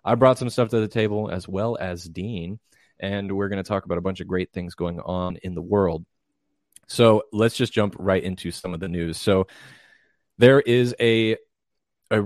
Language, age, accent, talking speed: English, 30-49, American, 205 wpm